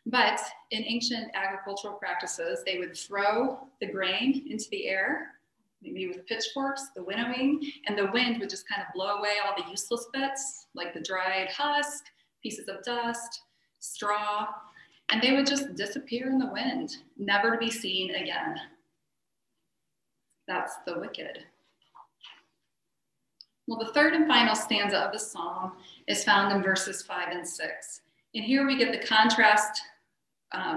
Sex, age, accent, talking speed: female, 30-49, American, 150 wpm